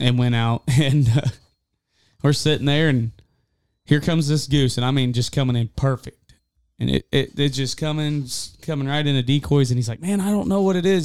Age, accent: 20-39, American